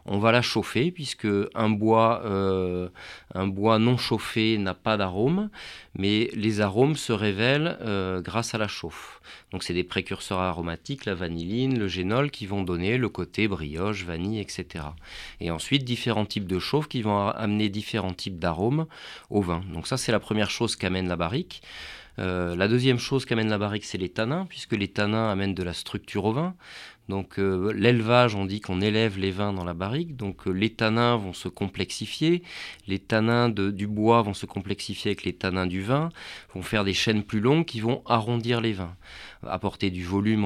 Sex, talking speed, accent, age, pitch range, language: male, 190 wpm, French, 40-59, 95-115 Hz, French